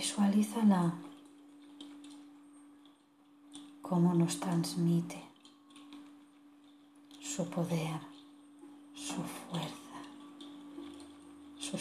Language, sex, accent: Spanish, female, Spanish